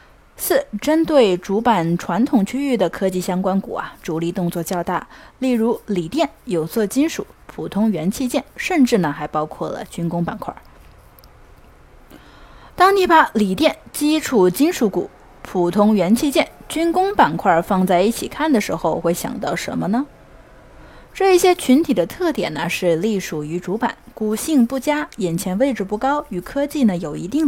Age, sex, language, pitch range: 20-39, female, Chinese, 185-285 Hz